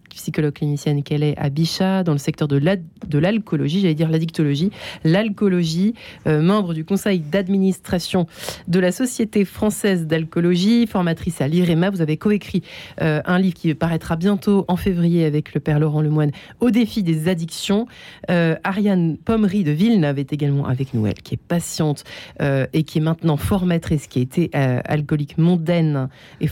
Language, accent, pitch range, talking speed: French, French, 150-190 Hz, 170 wpm